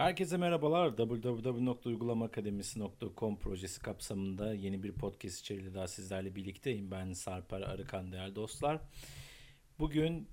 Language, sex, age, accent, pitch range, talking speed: Turkish, male, 50-69, native, 100-130 Hz, 105 wpm